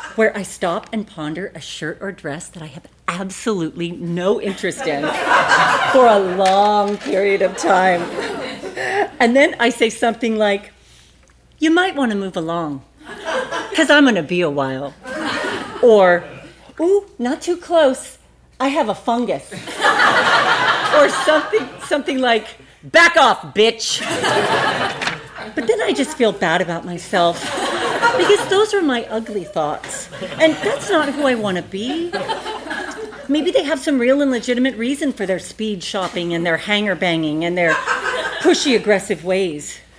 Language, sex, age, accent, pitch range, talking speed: English, female, 40-59, American, 190-285 Hz, 150 wpm